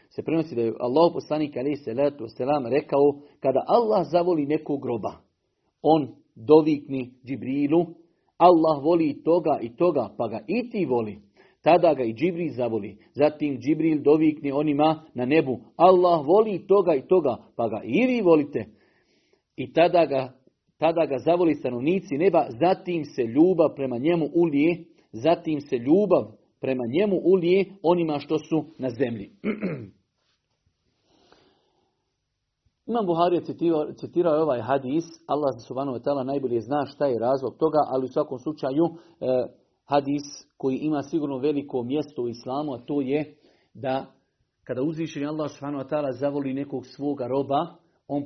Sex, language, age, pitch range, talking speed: male, Croatian, 50-69, 135-170 Hz, 140 wpm